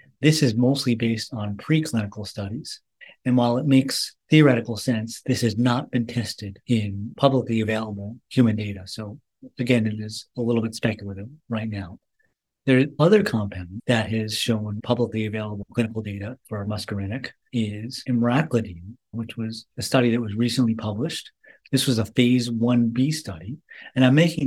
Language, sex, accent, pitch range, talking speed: English, male, American, 110-130 Hz, 160 wpm